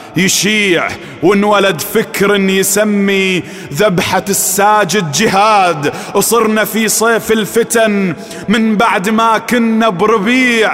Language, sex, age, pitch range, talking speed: Arabic, male, 30-49, 190-250 Hz, 90 wpm